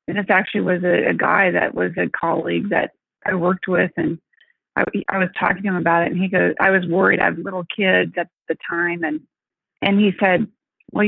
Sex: female